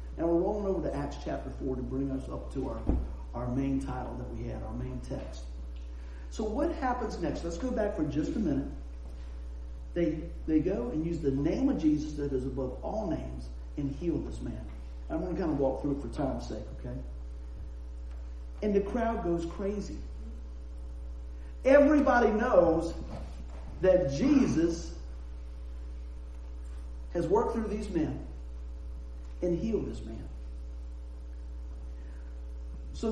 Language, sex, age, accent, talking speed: English, male, 50-69, American, 150 wpm